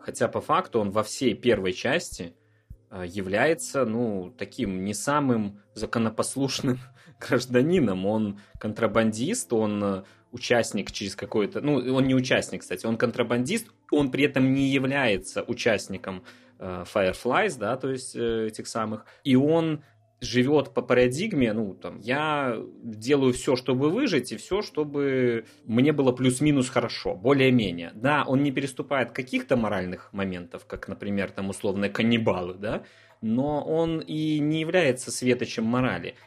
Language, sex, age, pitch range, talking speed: Russian, male, 20-39, 105-135 Hz, 130 wpm